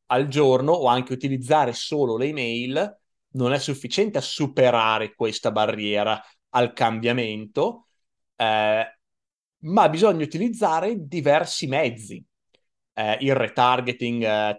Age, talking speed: 30-49, 110 wpm